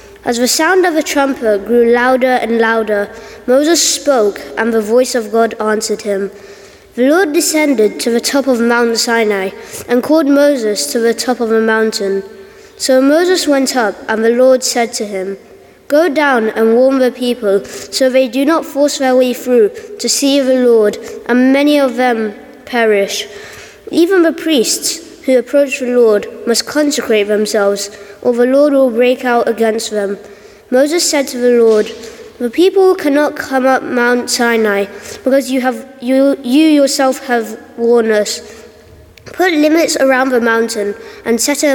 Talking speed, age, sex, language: 170 wpm, 20-39, female, English